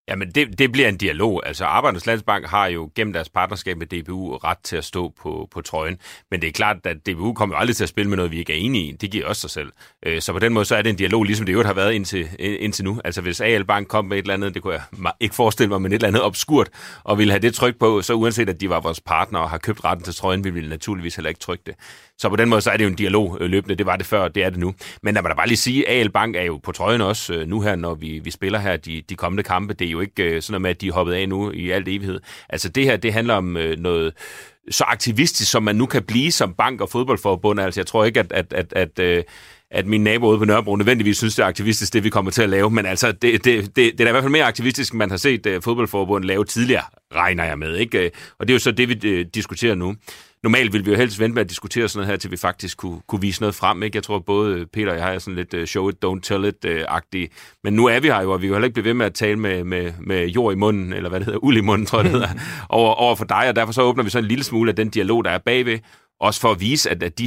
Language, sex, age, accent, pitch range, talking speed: Danish, male, 30-49, native, 95-115 Hz, 300 wpm